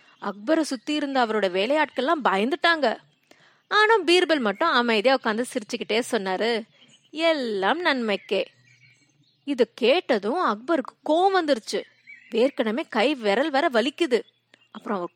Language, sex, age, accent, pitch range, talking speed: Tamil, female, 20-39, native, 215-320 Hz, 95 wpm